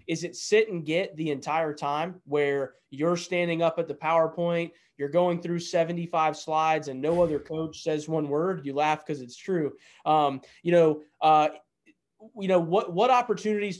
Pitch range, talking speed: 150-180 Hz, 180 wpm